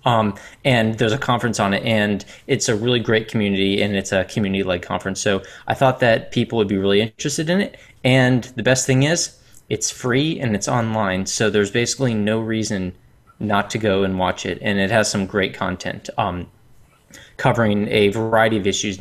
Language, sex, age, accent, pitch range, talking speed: English, male, 20-39, American, 105-125 Hz, 195 wpm